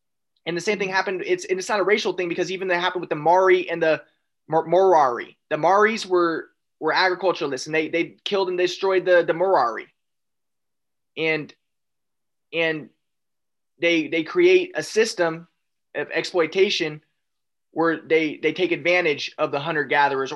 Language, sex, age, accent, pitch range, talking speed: English, male, 20-39, American, 145-180 Hz, 160 wpm